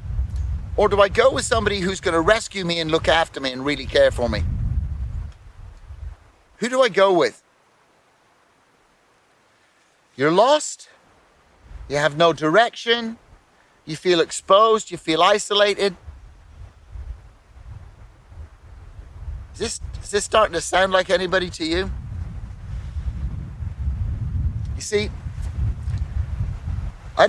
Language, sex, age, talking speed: English, male, 30-49, 110 wpm